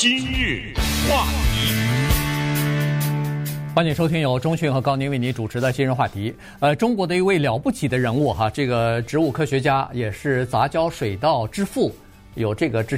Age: 50-69